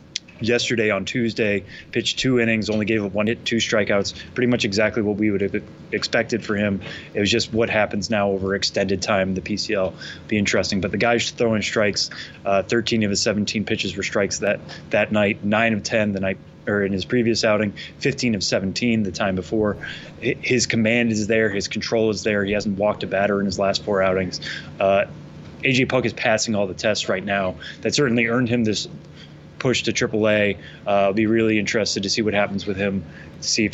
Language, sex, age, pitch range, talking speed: English, male, 20-39, 100-115 Hz, 215 wpm